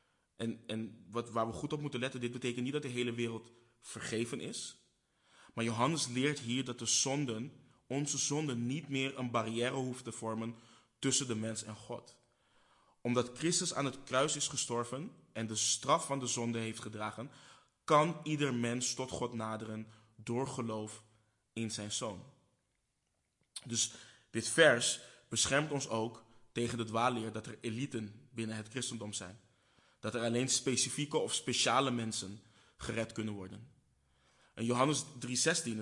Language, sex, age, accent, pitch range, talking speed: Dutch, male, 20-39, Dutch, 110-130 Hz, 155 wpm